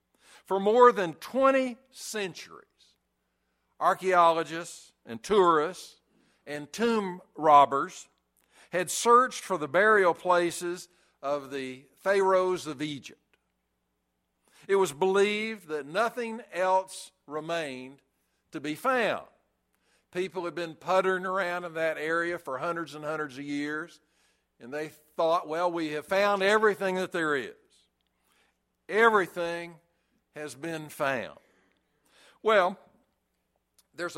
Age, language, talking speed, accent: 60-79, English, 110 wpm, American